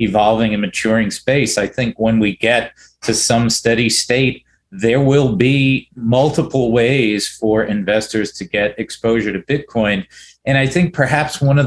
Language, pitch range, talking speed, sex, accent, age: English, 120-155 Hz, 160 wpm, male, American, 40-59